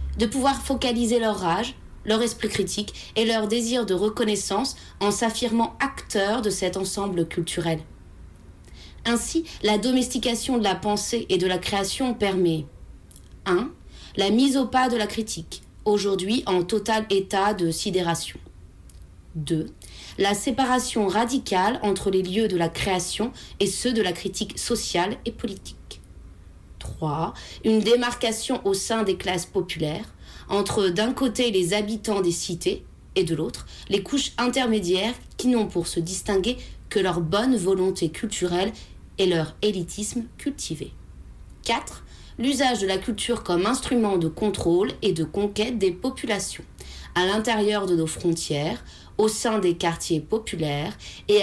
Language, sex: French, female